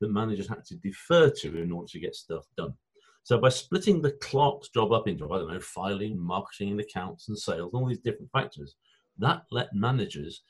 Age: 50-69